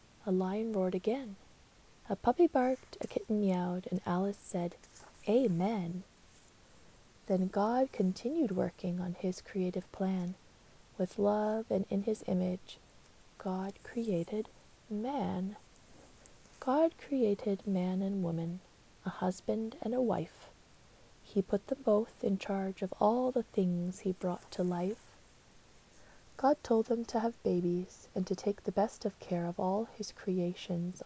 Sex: female